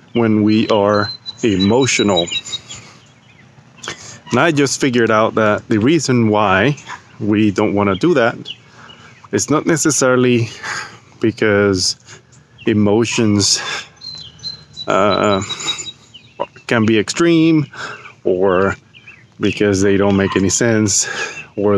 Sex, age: male, 30-49